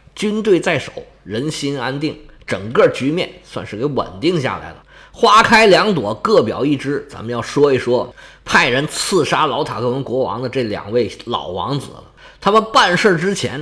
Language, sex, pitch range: Chinese, male, 115-190 Hz